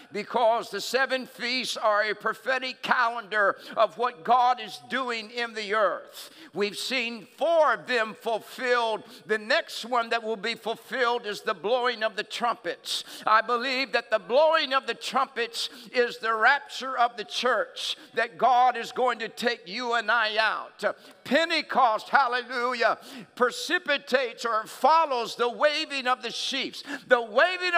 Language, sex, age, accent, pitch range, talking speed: English, male, 50-69, American, 235-290 Hz, 155 wpm